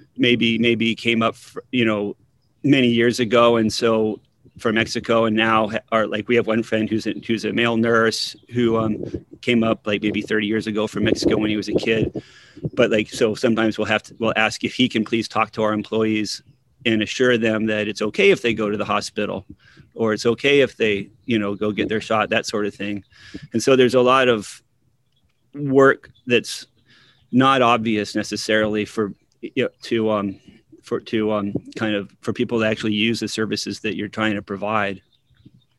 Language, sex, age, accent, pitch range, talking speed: English, male, 30-49, American, 110-125 Hz, 200 wpm